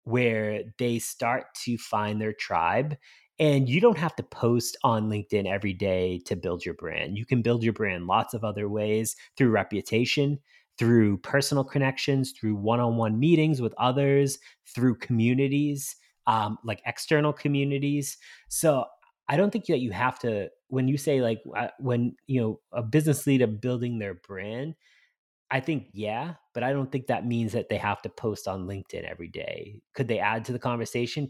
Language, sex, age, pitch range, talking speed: English, male, 30-49, 110-140 Hz, 175 wpm